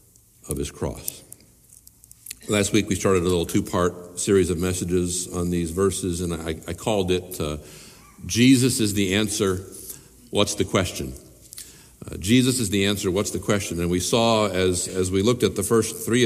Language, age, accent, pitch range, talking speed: English, 60-79, American, 90-130 Hz, 175 wpm